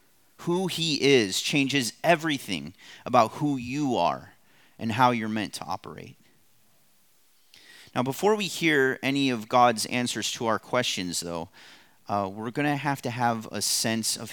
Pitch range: 105-130 Hz